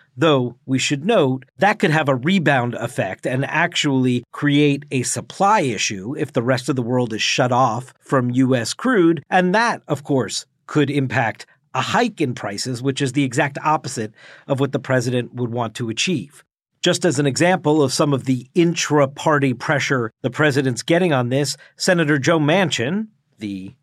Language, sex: English, male